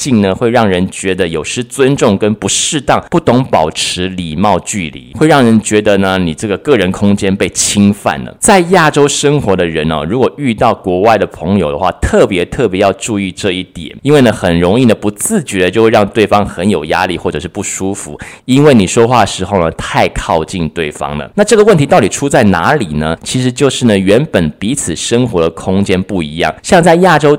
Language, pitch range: Chinese, 95-135 Hz